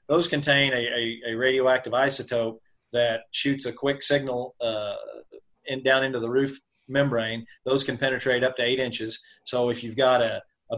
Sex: male